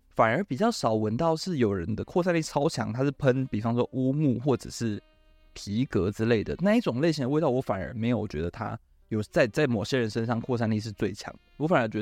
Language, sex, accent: Chinese, male, native